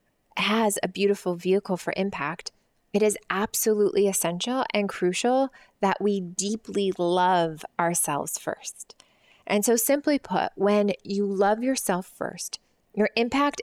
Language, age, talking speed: English, 20-39, 130 wpm